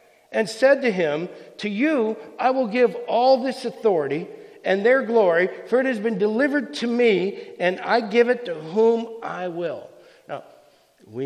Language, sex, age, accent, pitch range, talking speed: English, male, 60-79, American, 150-230 Hz, 170 wpm